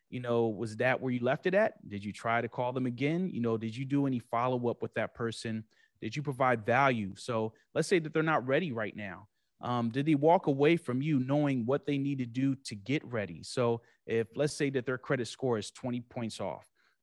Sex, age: male, 30-49